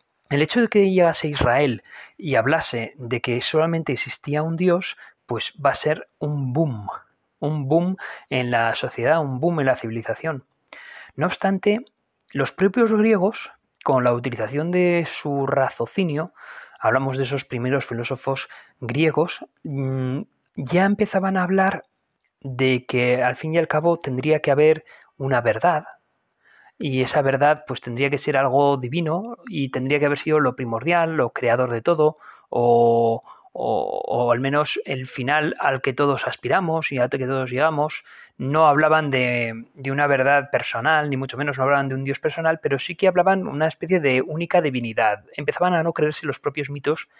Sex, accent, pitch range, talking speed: male, Spanish, 130-165 Hz, 170 wpm